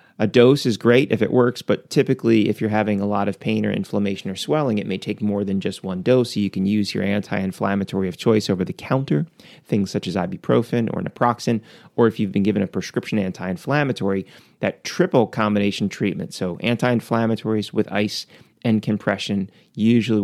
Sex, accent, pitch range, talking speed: male, American, 100-115 Hz, 190 wpm